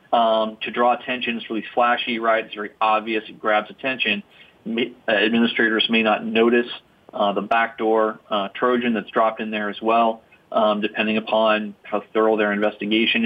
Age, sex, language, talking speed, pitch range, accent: 30-49, male, English, 165 wpm, 105-115 Hz, American